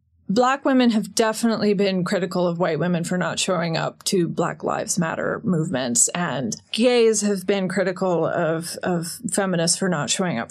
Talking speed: 170 wpm